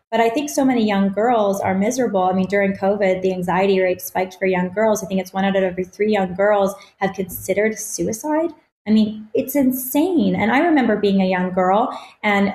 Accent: American